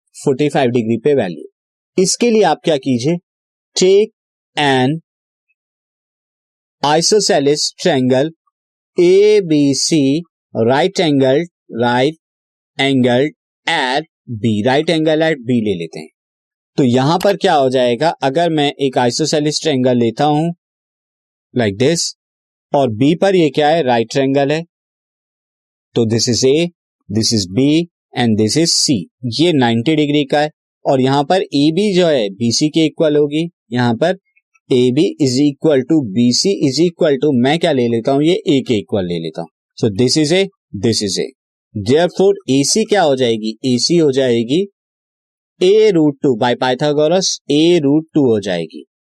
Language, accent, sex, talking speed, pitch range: Hindi, native, male, 150 wpm, 125-170 Hz